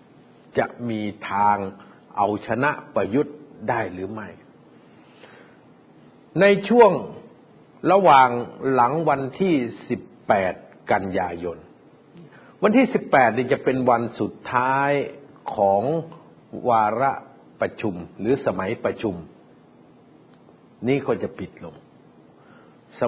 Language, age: Thai, 60-79